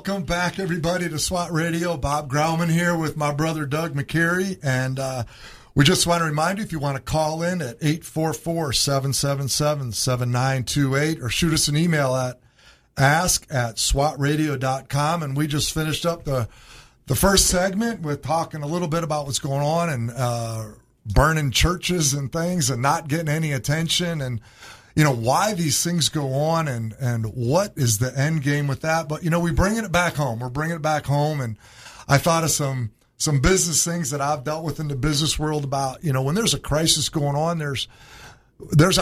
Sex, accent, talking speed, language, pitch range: male, American, 190 wpm, English, 130-160 Hz